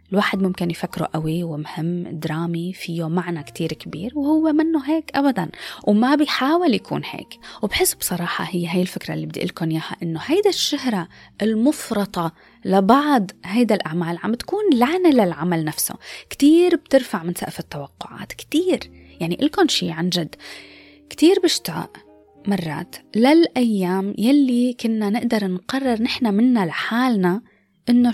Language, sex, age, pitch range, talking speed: Arabic, female, 20-39, 175-270 Hz, 130 wpm